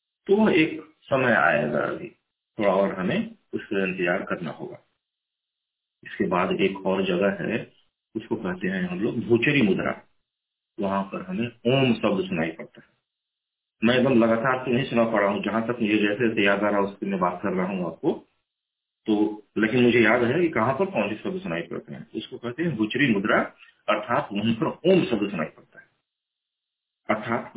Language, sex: Hindi, male